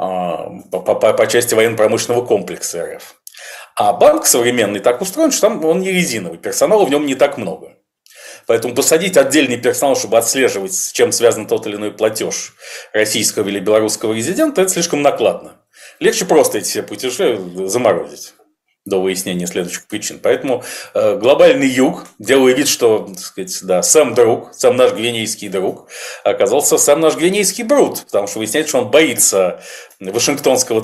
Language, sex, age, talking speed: Russian, male, 40-59, 160 wpm